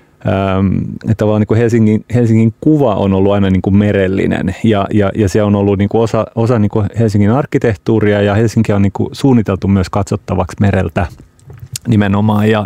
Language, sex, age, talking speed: Finnish, male, 30-49, 145 wpm